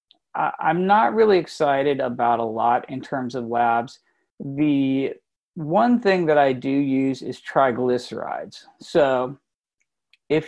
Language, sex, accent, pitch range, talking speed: English, male, American, 120-155 Hz, 125 wpm